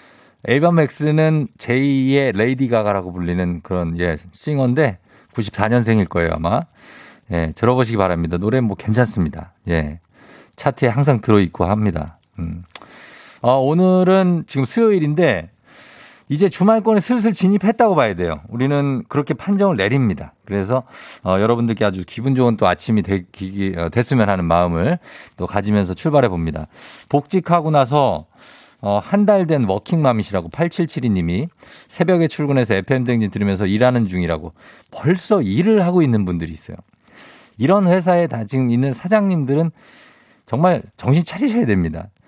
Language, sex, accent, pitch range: Korean, male, native, 95-155 Hz